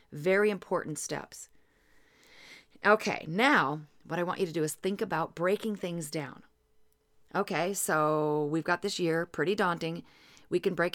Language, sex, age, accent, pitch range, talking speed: English, female, 40-59, American, 160-210 Hz, 155 wpm